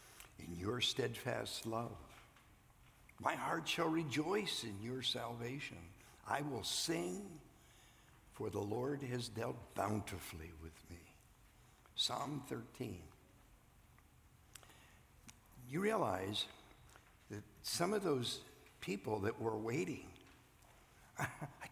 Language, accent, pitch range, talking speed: English, American, 105-145 Hz, 95 wpm